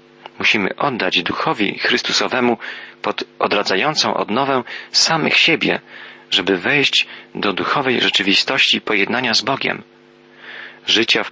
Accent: native